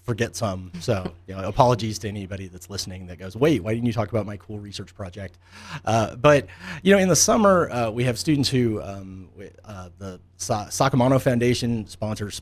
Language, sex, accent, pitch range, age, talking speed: English, male, American, 90-110 Hz, 30-49, 185 wpm